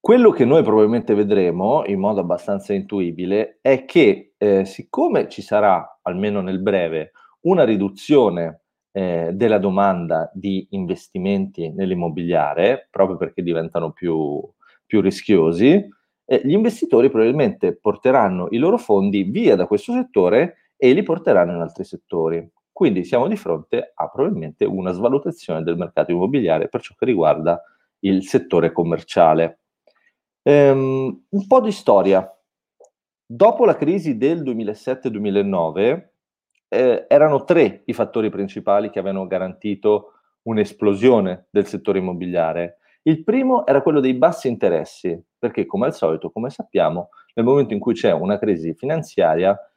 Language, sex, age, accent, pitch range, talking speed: Italian, male, 30-49, native, 90-130 Hz, 135 wpm